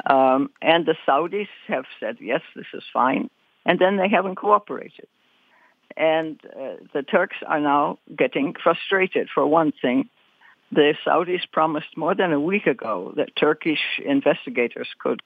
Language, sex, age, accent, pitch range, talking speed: English, female, 60-79, American, 140-190 Hz, 150 wpm